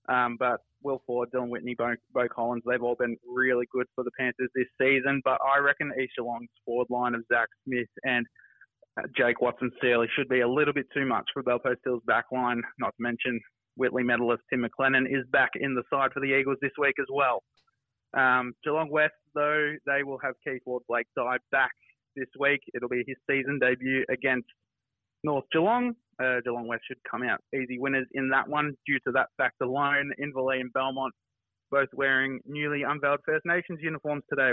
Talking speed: 190 wpm